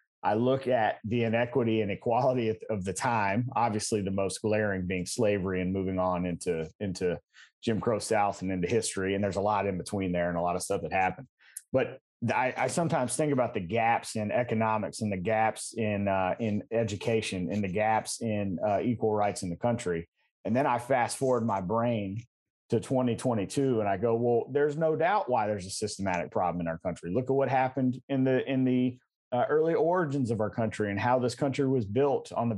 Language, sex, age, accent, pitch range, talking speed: English, male, 30-49, American, 105-130 Hz, 210 wpm